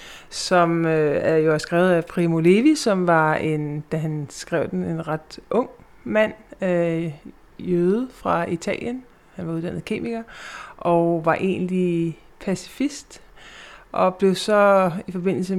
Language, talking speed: Danish, 140 wpm